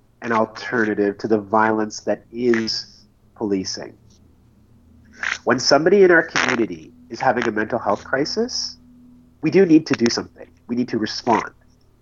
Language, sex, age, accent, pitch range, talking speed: English, male, 30-49, American, 110-130 Hz, 145 wpm